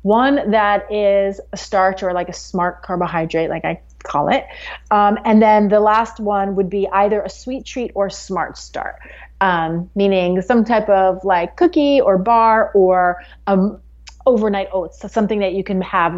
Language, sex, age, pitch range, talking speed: English, female, 30-49, 185-220 Hz, 175 wpm